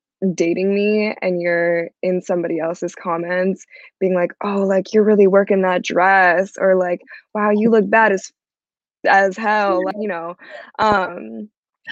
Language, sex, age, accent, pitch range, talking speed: English, female, 20-39, American, 185-220 Hz, 145 wpm